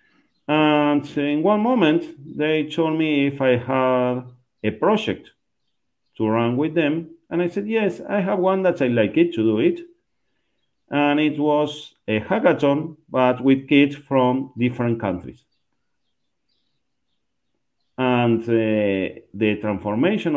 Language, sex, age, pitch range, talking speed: English, male, 50-69, 120-155 Hz, 135 wpm